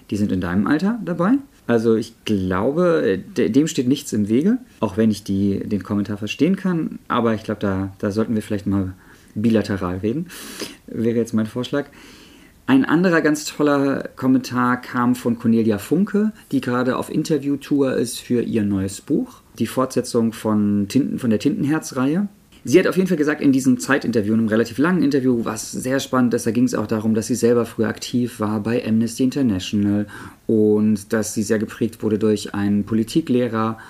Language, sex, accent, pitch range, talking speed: German, male, German, 110-145 Hz, 180 wpm